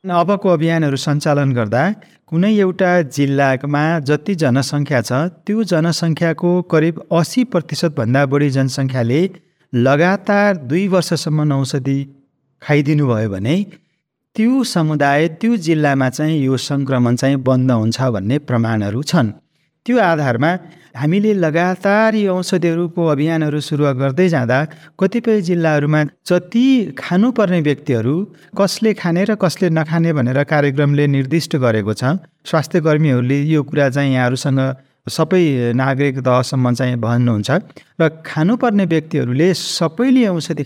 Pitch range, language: 135-175 Hz, English